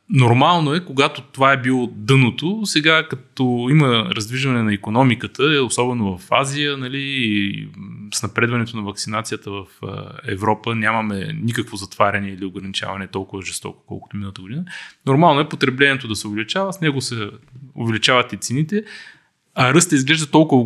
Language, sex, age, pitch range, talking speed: Bulgarian, male, 20-39, 110-140 Hz, 145 wpm